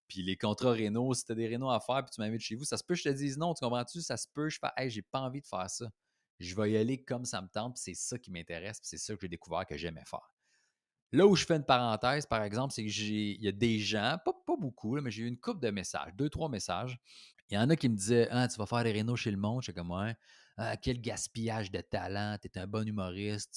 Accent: Canadian